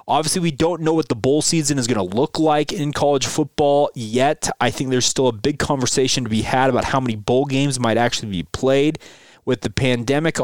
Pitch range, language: 120-145 Hz, English